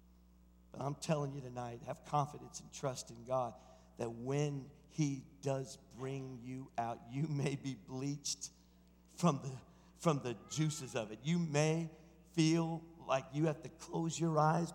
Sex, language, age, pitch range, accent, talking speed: male, English, 50-69, 145-205 Hz, American, 150 wpm